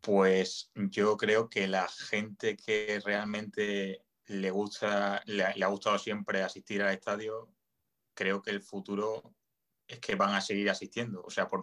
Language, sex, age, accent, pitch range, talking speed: Spanish, male, 20-39, Spanish, 95-105 Hz, 155 wpm